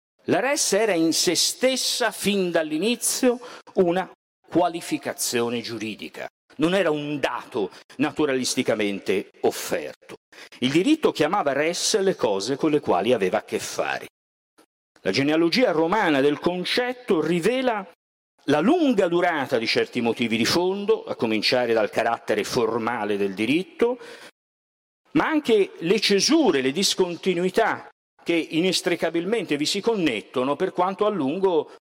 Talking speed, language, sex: 125 wpm, Italian, male